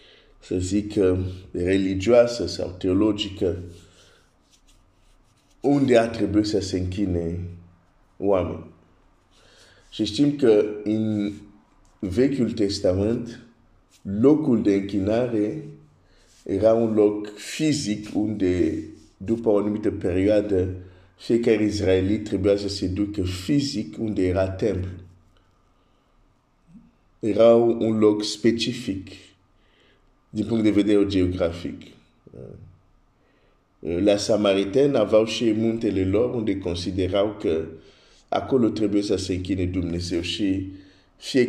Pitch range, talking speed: 95-115 Hz, 110 wpm